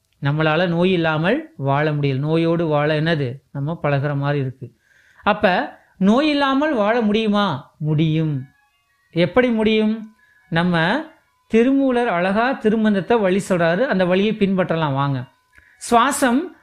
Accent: native